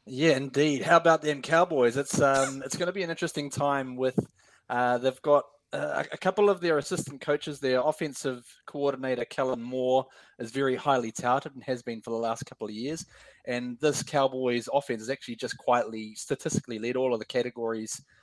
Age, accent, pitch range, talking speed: 20-39, Australian, 110-140 Hz, 190 wpm